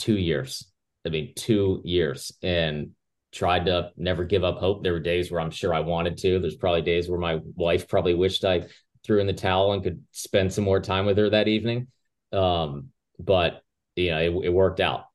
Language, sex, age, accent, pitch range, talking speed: English, male, 30-49, American, 90-105 Hz, 210 wpm